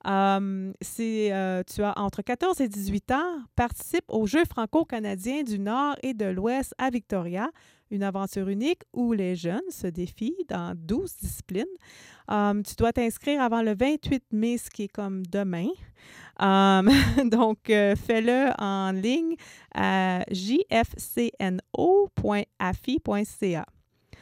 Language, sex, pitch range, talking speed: French, female, 190-245 Hz, 130 wpm